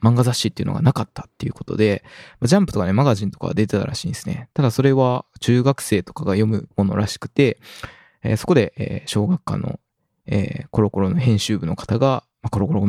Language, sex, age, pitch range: Japanese, male, 20-39, 105-135 Hz